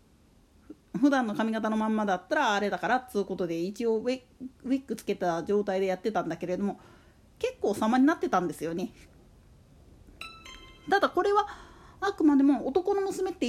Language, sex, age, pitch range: Japanese, female, 40-59, 205-335 Hz